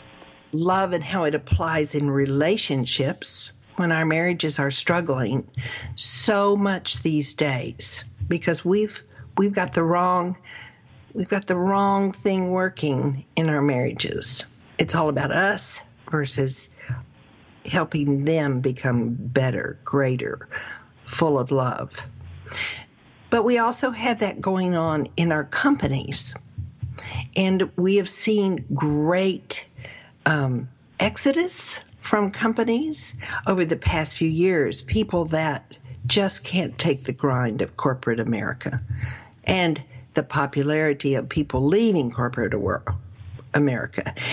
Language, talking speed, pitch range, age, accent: English, 115 wpm, 125-185 Hz, 60-79, American